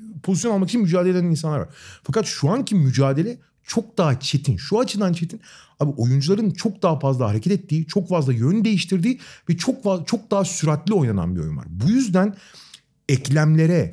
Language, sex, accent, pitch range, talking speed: Turkish, male, native, 140-195 Hz, 170 wpm